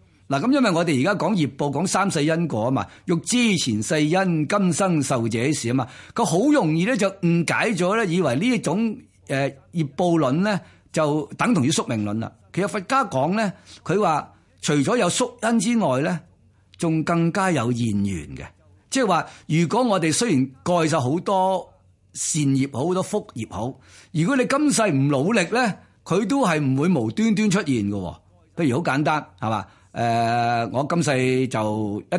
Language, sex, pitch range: Chinese, male, 115-185 Hz